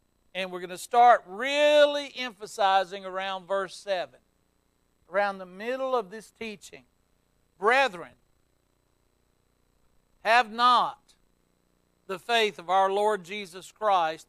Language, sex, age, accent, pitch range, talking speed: English, male, 60-79, American, 160-210 Hz, 110 wpm